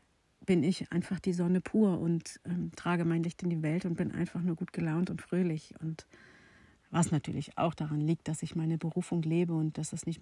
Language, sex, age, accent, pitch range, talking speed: German, female, 50-69, German, 160-180 Hz, 215 wpm